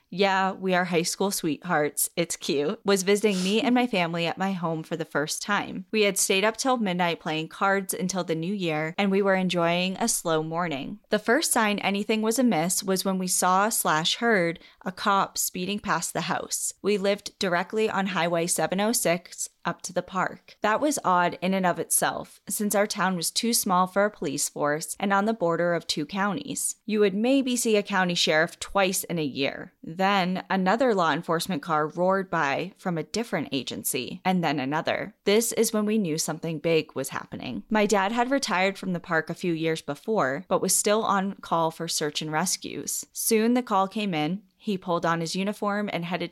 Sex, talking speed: female, 205 wpm